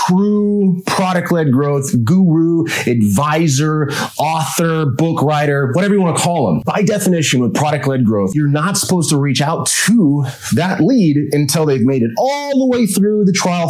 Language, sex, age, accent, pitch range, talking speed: English, male, 30-49, American, 145-200 Hz, 165 wpm